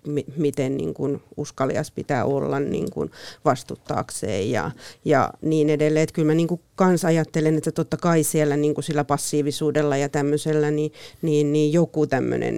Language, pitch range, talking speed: Finnish, 145-160 Hz, 150 wpm